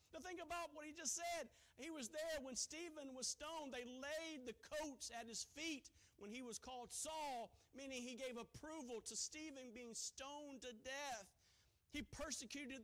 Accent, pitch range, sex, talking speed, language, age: American, 215-295 Hz, male, 180 wpm, English, 50-69